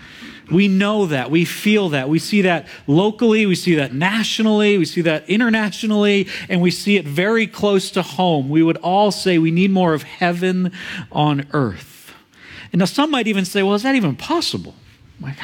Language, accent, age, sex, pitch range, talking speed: English, American, 40-59, male, 175-225 Hz, 190 wpm